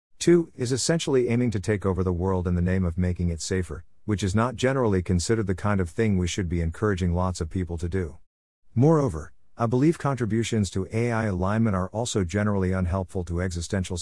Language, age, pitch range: English, 50-69, 90-115 Hz